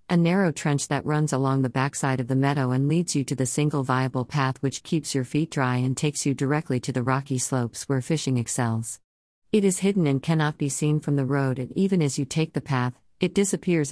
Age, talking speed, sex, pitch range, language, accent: 50-69, 235 wpm, female, 130-160 Hz, English, American